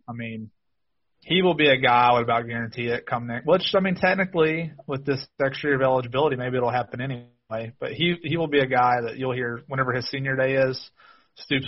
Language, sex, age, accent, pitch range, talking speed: English, male, 30-49, American, 120-140 Hz, 230 wpm